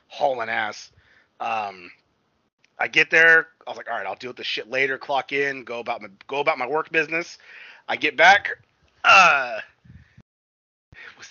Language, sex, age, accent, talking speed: English, male, 30-49, American, 170 wpm